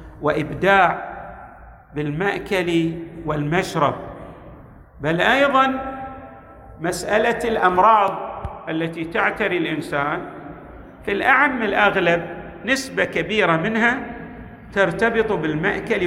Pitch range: 160-215 Hz